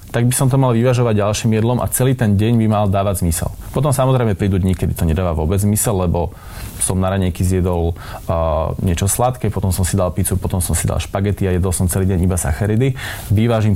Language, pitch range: Slovak, 95-110 Hz